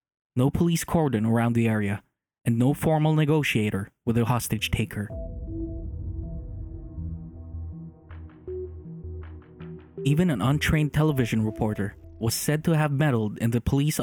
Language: English